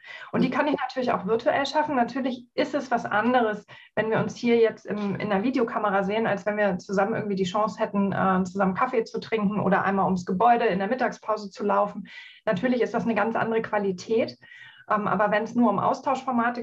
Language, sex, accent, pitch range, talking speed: German, female, German, 200-235 Hz, 205 wpm